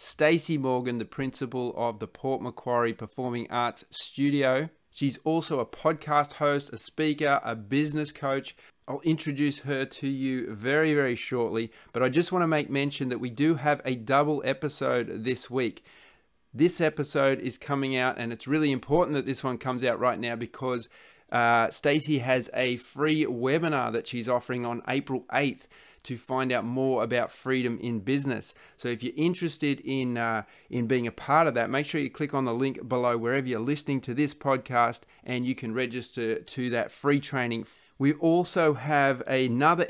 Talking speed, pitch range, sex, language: 180 wpm, 120-145 Hz, male, English